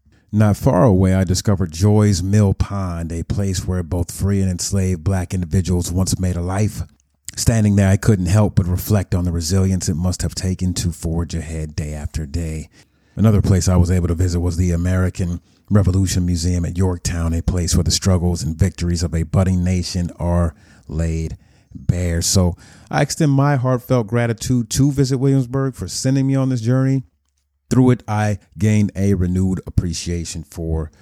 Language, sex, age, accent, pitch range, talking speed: English, male, 30-49, American, 85-105 Hz, 180 wpm